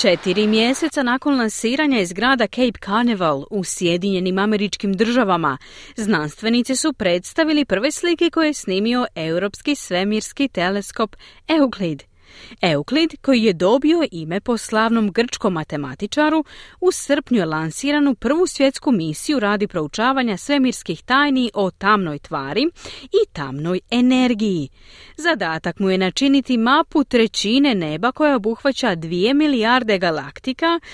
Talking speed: 120 wpm